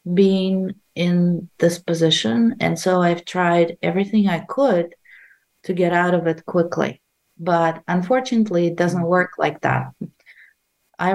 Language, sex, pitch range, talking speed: English, female, 165-185 Hz, 135 wpm